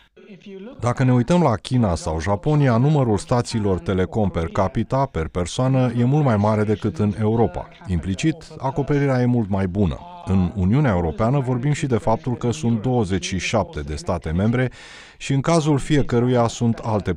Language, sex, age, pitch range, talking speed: Romanian, male, 30-49, 95-130 Hz, 160 wpm